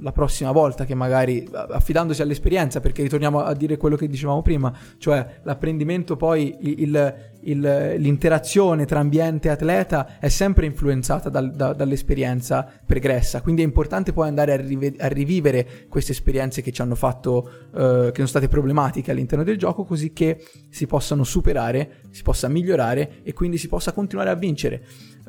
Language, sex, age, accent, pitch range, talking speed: Italian, male, 20-39, native, 130-150 Hz, 165 wpm